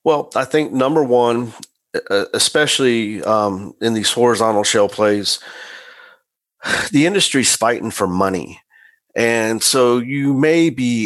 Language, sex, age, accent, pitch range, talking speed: English, male, 50-69, American, 105-125 Hz, 120 wpm